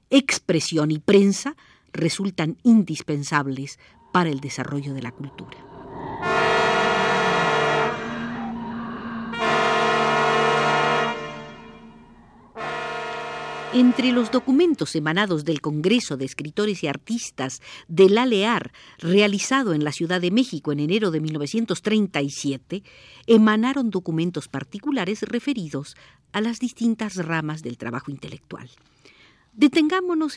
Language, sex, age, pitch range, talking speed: Spanish, female, 50-69, 150-215 Hz, 90 wpm